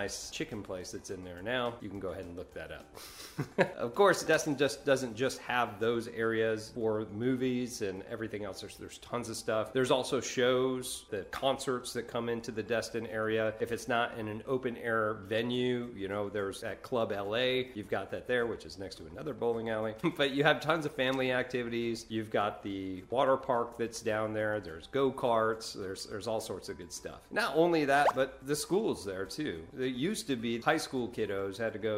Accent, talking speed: American, 210 wpm